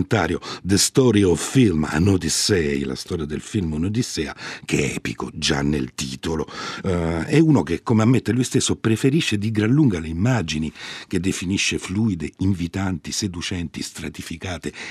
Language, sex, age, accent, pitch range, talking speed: Italian, male, 50-69, native, 85-125 Hz, 150 wpm